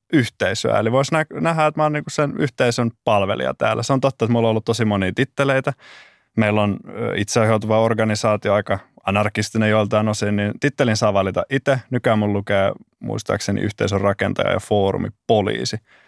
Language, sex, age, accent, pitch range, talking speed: Finnish, male, 20-39, native, 100-120 Hz, 170 wpm